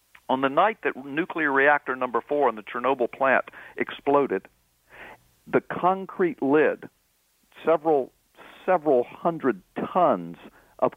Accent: American